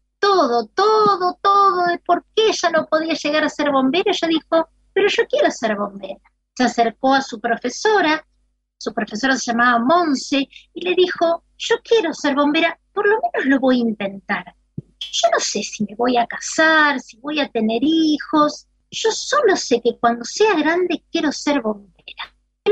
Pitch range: 235-340 Hz